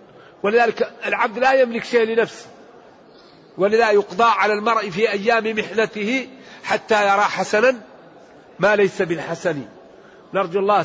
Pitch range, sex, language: 170-215 Hz, male, Arabic